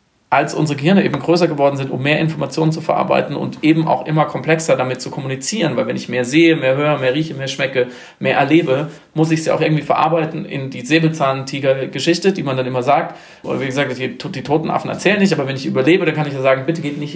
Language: German